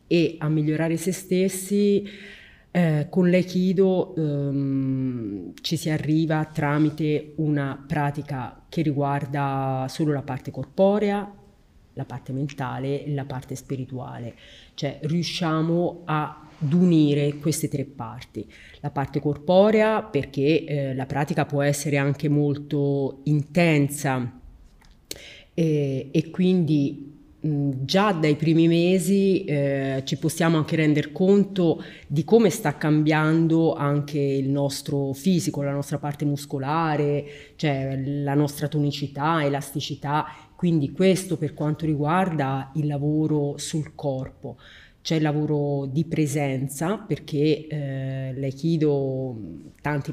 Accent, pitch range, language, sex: native, 140-160 Hz, Italian, female